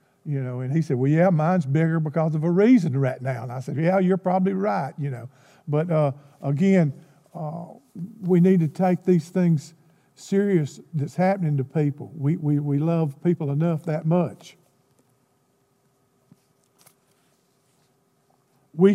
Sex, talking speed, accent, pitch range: male, 150 wpm, American, 135-170 Hz